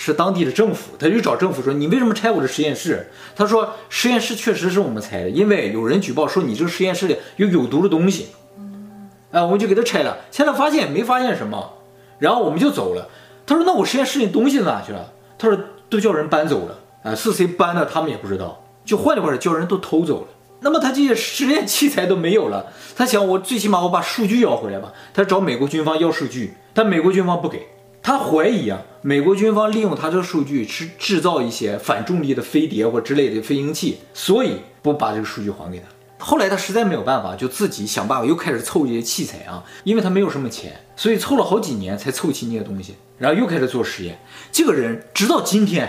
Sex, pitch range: male, 130-210 Hz